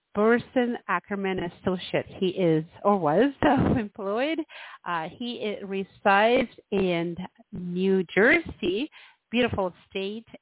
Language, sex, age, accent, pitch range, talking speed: English, female, 50-69, American, 180-225 Hz, 100 wpm